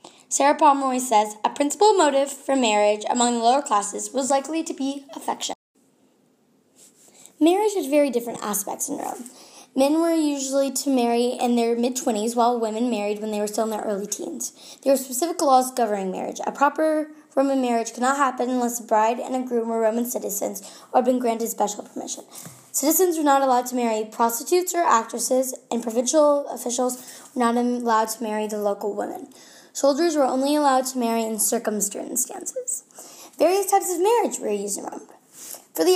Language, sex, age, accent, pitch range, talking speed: English, female, 10-29, American, 230-290 Hz, 180 wpm